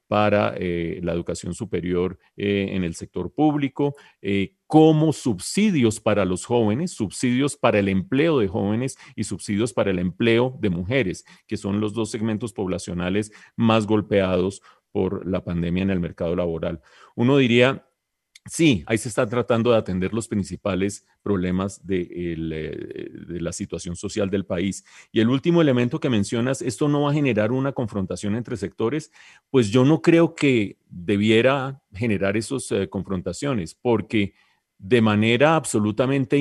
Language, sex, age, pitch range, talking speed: English, male, 40-59, 95-130 Hz, 150 wpm